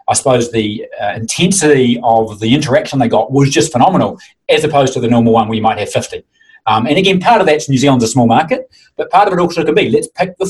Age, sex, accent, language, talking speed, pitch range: 30-49, male, Australian, English, 255 wpm, 115-150 Hz